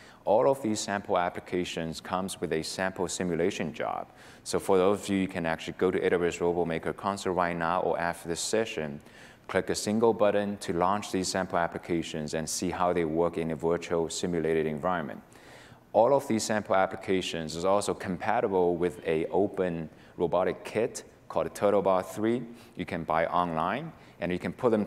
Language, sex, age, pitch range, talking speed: English, male, 30-49, 85-105 Hz, 180 wpm